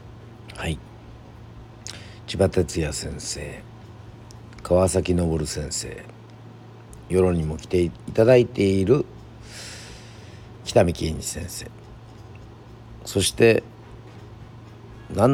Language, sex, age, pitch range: Japanese, male, 50-69, 90-115 Hz